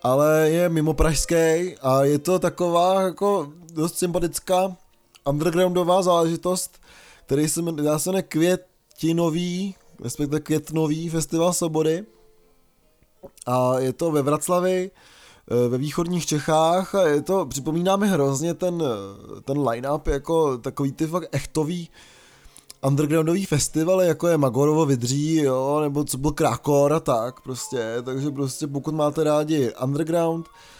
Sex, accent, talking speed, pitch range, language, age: male, native, 125 wpm, 135-165 Hz, Czech, 20-39